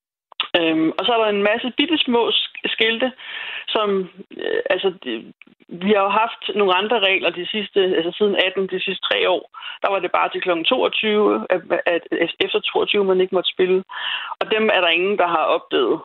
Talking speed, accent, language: 200 wpm, native, Danish